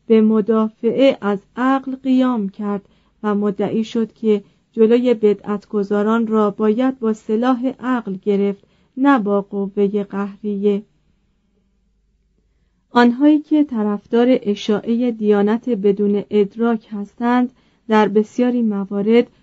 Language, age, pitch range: Persian, 40-59, 205-245 Hz